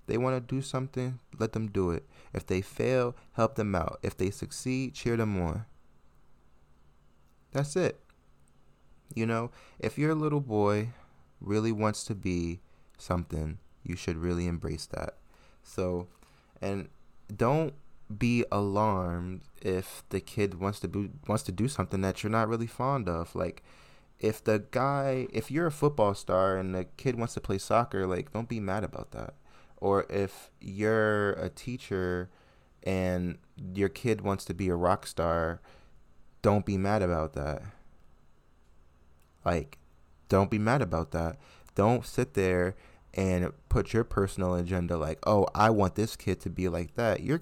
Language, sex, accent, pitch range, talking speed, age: English, male, American, 85-115 Hz, 160 wpm, 20-39